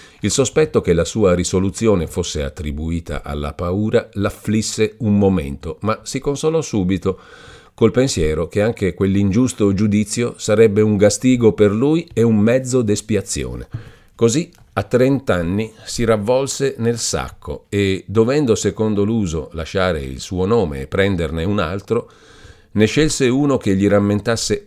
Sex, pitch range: male, 95-120 Hz